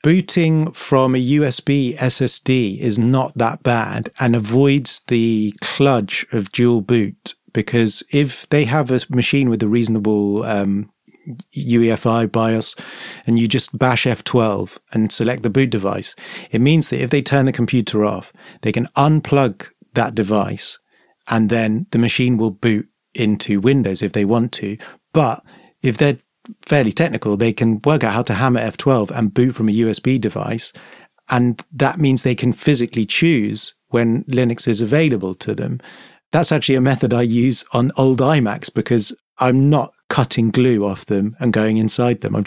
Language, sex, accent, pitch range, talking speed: English, male, British, 110-135 Hz, 165 wpm